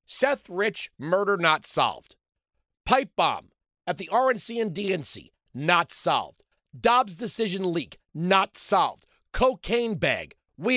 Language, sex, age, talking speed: English, male, 50-69, 125 wpm